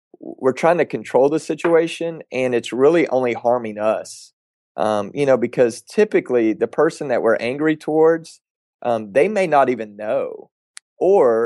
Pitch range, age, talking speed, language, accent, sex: 110-165 Hz, 30-49, 155 wpm, English, American, male